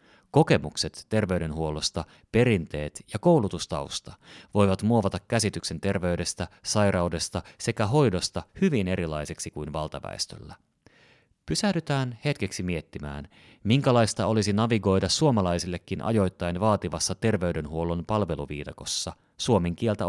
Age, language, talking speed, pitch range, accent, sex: 30-49, Finnish, 85 wpm, 85-110 Hz, native, male